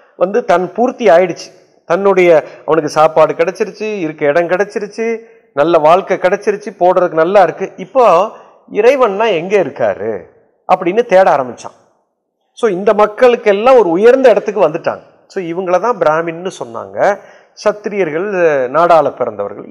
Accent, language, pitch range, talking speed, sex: native, Tamil, 190-265 Hz, 120 wpm, male